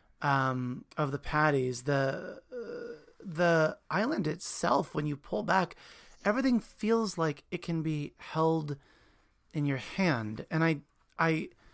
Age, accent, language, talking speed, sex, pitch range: 30-49, American, English, 135 wpm, male, 145-185 Hz